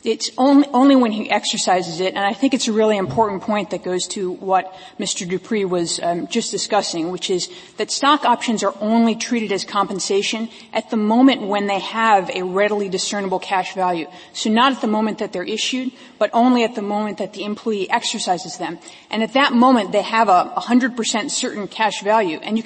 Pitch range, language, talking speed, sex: 190-235 Hz, English, 205 wpm, female